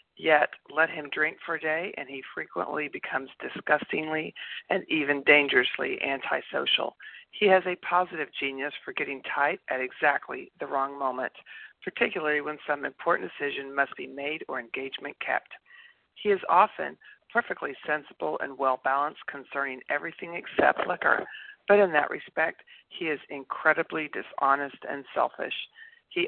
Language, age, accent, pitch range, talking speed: English, 50-69, American, 140-185 Hz, 140 wpm